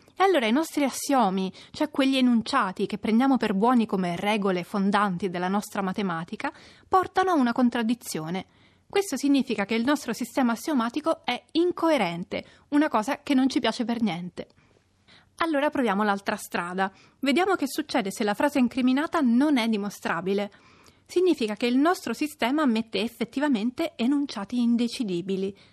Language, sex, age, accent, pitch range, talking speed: Italian, female, 30-49, native, 210-295 Hz, 145 wpm